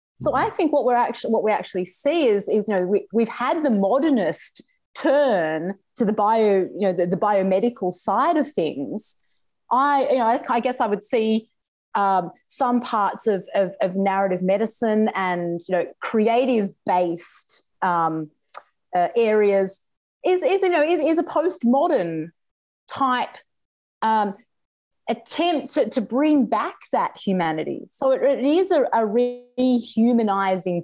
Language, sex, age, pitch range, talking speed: English, female, 30-49, 205-275 Hz, 160 wpm